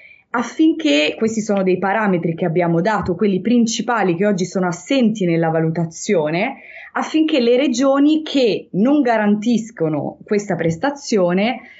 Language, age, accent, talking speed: Italian, 20-39, native, 120 wpm